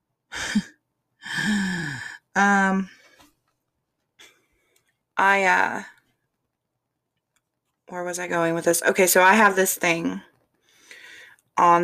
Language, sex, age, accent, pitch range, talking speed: English, female, 20-39, American, 170-190 Hz, 80 wpm